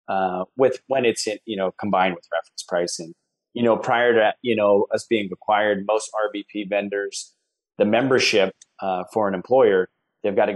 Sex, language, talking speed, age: male, English, 180 wpm, 30-49